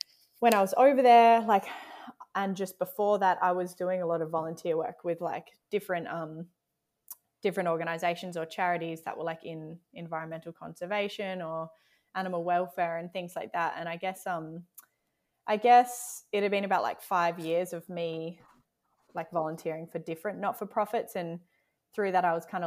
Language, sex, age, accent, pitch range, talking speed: English, female, 20-39, Australian, 165-185 Hz, 170 wpm